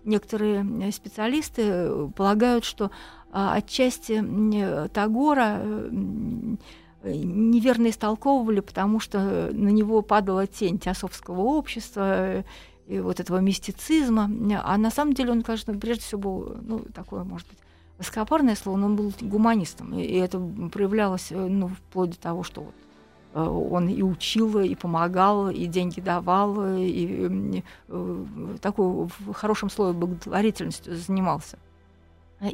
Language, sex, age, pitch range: Russian, female, 50-69, 175-220 Hz